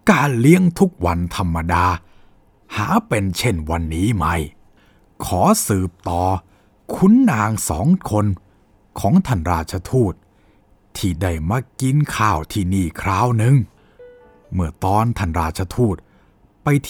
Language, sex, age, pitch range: Thai, male, 60-79, 90-125 Hz